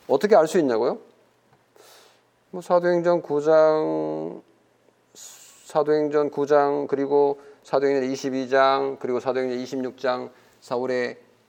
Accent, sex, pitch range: native, male, 120-200 Hz